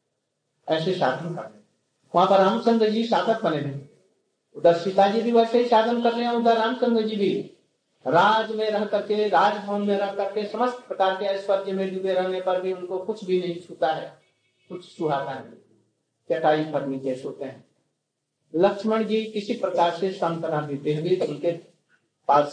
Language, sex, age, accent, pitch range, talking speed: Hindi, male, 60-79, native, 165-210 Hz, 80 wpm